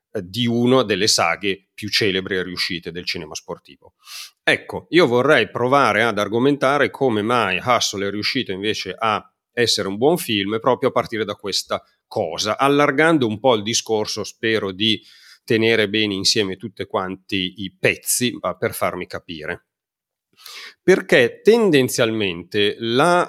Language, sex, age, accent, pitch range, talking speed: Italian, male, 40-59, native, 95-125 Hz, 140 wpm